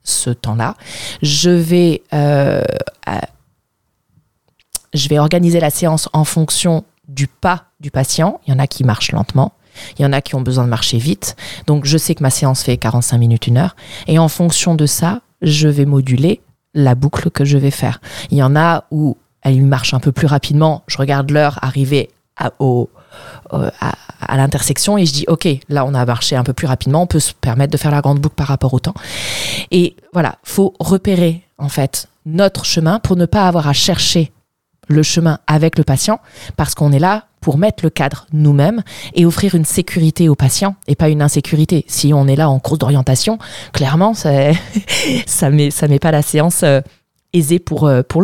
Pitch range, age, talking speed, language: 135-165 Hz, 20-39, 205 wpm, French